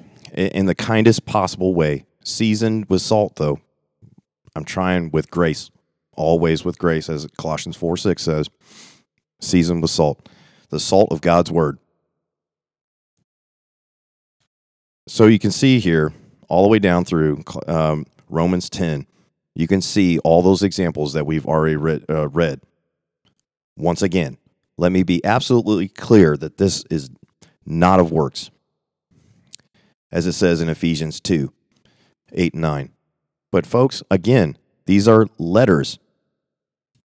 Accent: American